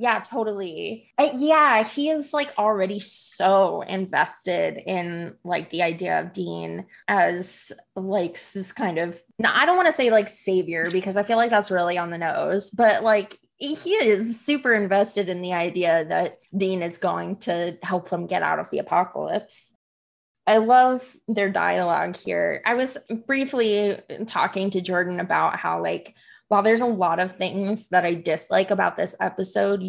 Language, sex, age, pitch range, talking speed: English, female, 20-39, 175-215 Hz, 170 wpm